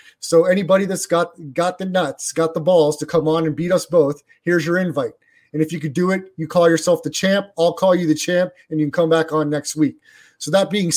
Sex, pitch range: male, 155-180 Hz